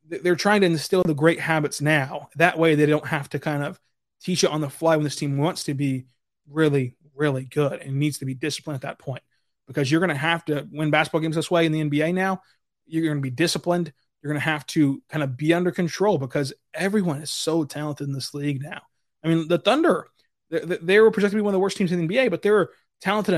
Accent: American